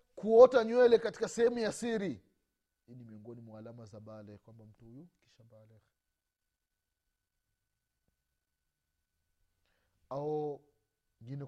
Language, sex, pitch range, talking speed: Swahili, male, 90-145 Hz, 80 wpm